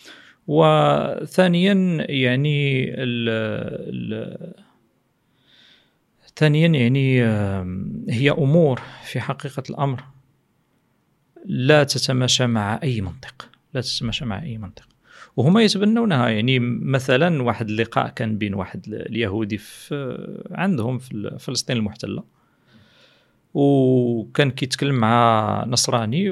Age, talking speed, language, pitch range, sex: 40-59, 85 wpm, Arabic, 115-150 Hz, male